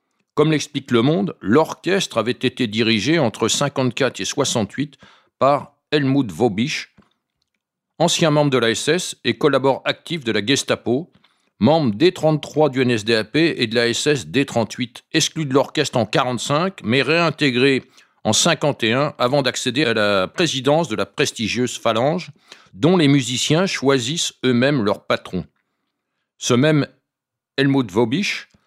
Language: French